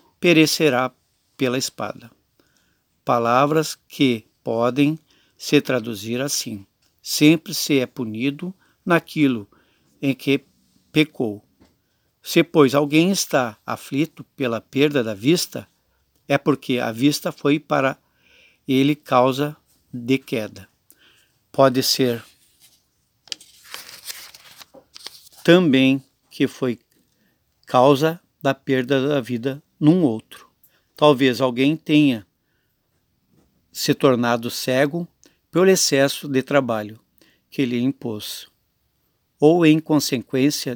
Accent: Brazilian